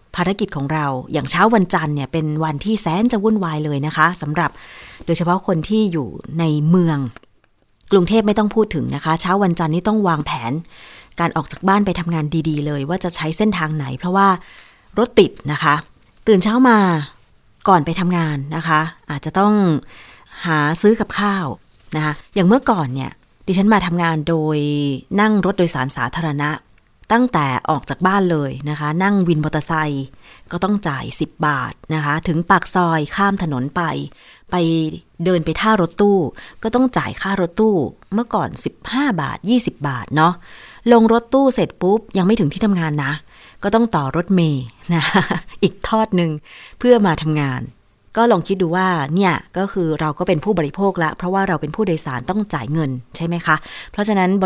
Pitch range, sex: 150-195 Hz, female